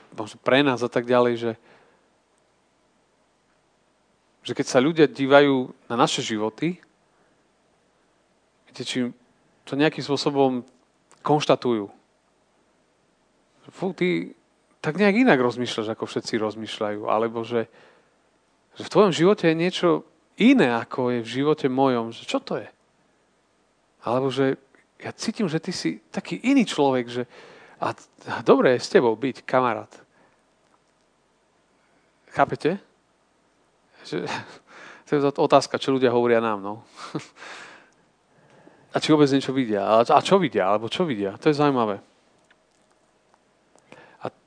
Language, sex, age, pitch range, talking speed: Slovak, male, 40-59, 115-150 Hz, 120 wpm